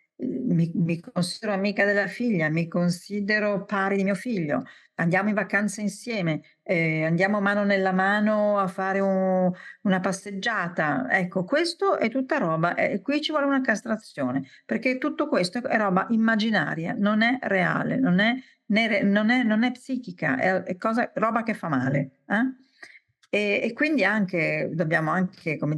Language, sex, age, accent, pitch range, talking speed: Italian, female, 50-69, native, 160-215 Hz, 160 wpm